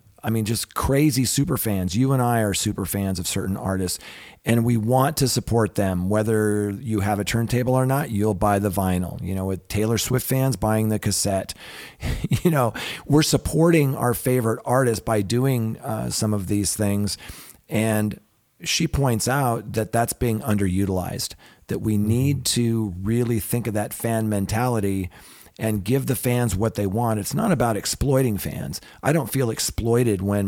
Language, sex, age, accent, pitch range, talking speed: English, male, 40-59, American, 100-120 Hz, 175 wpm